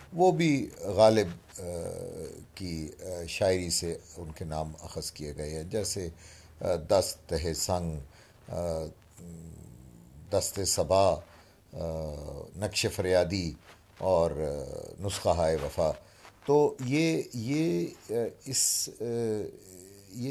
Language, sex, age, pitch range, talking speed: Urdu, male, 50-69, 85-125 Hz, 75 wpm